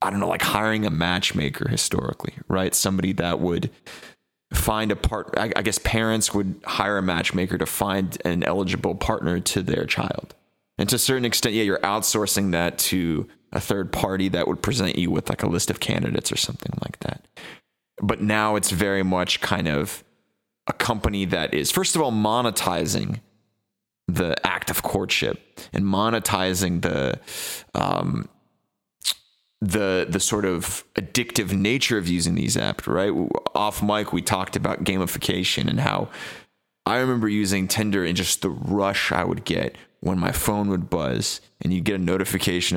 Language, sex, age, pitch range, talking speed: English, male, 30-49, 95-105 Hz, 170 wpm